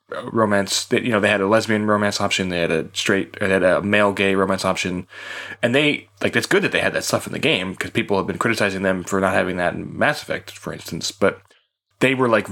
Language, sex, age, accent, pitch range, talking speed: English, male, 10-29, American, 95-130 Hz, 255 wpm